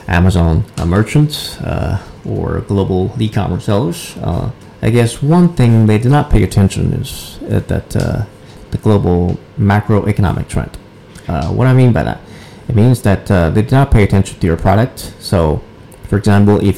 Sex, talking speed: male, 170 wpm